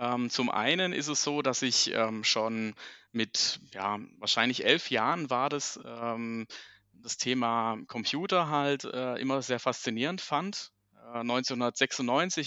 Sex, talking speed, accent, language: male, 135 wpm, German, German